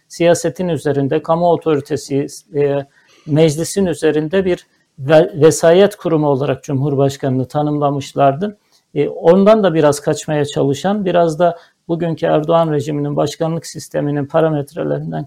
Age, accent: 60-79, native